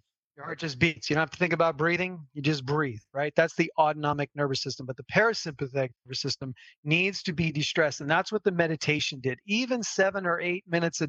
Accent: American